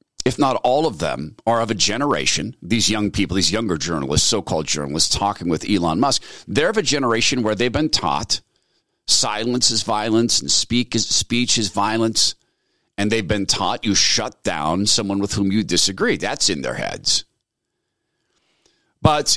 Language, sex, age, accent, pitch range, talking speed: English, male, 50-69, American, 105-140 Hz, 170 wpm